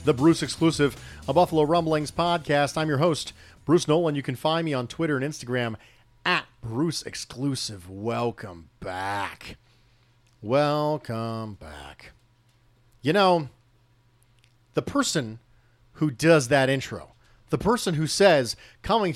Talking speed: 125 wpm